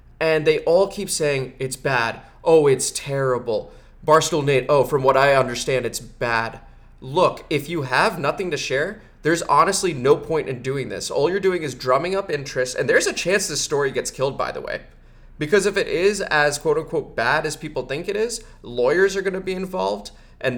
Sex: male